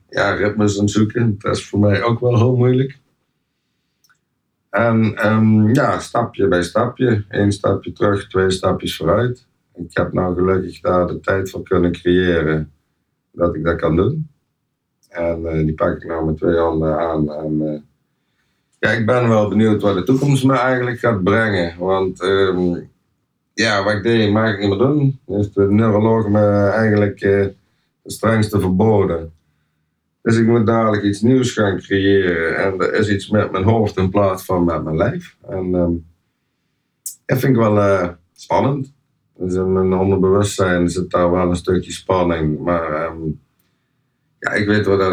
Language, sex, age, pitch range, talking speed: Dutch, male, 50-69, 85-110 Hz, 165 wpm